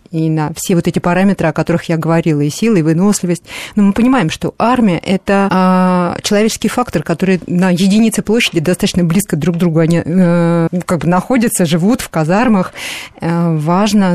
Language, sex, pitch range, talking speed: Russian, female, 165-185 Hz, 165 wpm